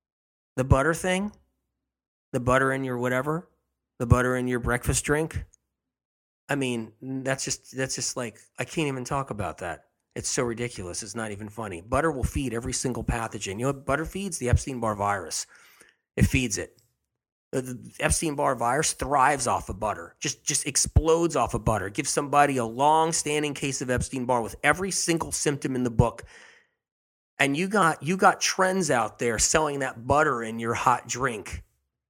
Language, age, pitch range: English, 30-49, 110-150 Hz